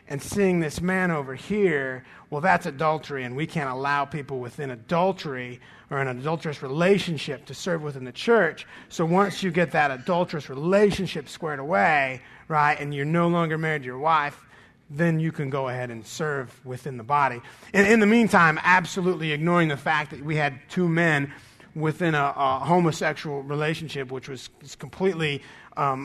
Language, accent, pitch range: English, American, 140-175 Hz